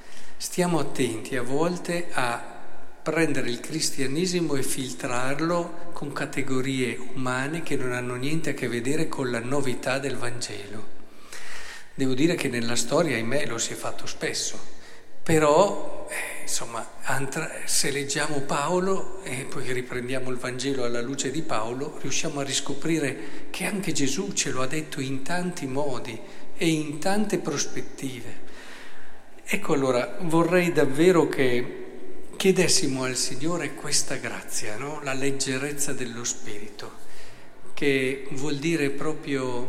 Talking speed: 130 wpm